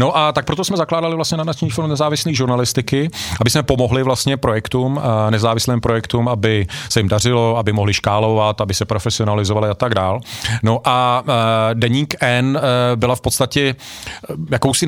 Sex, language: male, Czech